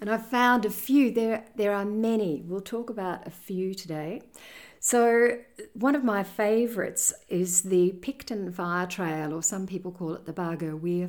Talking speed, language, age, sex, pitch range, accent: 180 wpm, English, 50-69, female, 170-210 Hz, Australian